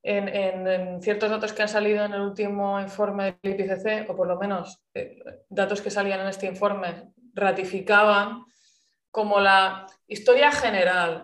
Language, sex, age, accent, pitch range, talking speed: Spanish, female, 20-39, Spanish, 190-220 Hz, 160 wpm